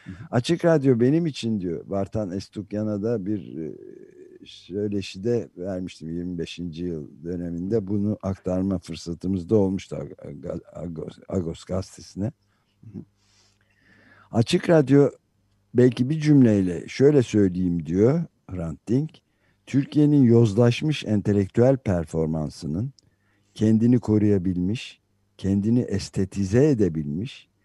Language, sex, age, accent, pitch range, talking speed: Turkish, male, 60-79, native, 95-125 Hz, 90 wpm